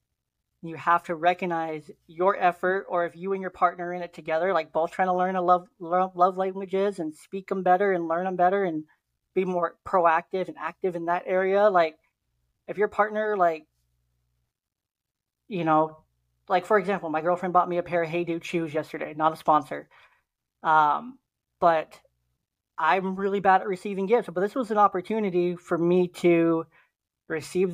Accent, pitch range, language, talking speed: American, 165-190 Hz, English, 180 wpm